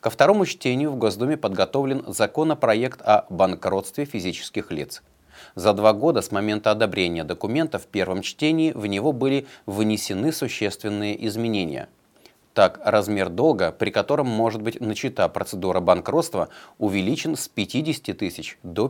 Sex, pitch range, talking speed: male, 100-140 Hz, 135 wpm